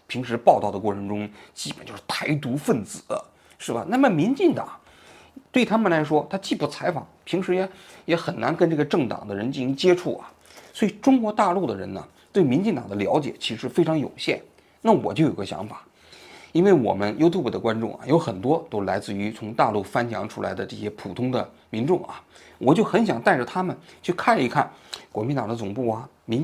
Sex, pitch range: male, 105-170 Hz